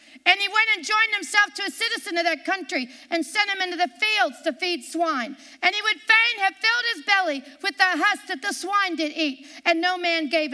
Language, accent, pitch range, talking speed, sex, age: English, American, 285-375 Hz, 235 wpm, female, 50-69